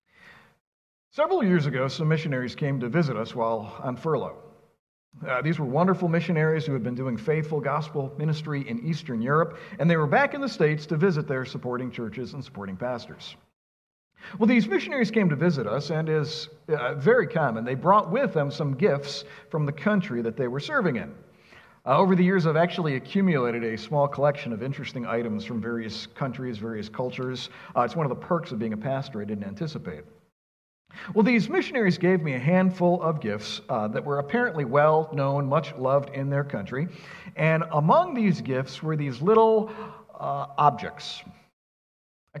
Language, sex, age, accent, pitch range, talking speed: English, male, 50-69, American, 130-180 Hz, 185 wpm